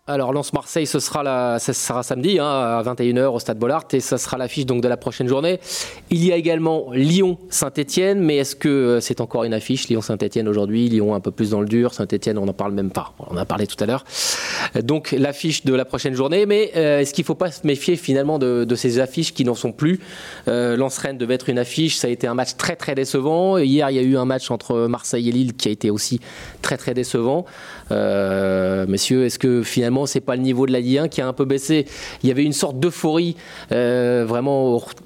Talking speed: 245 wpm